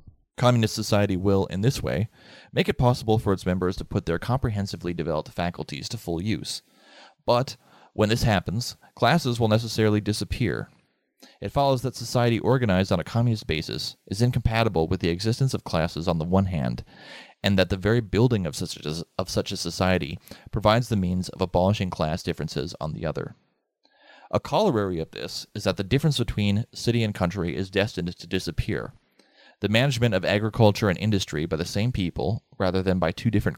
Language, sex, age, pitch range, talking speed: English, male, 30-49, 90-115 Hz, 175 wpm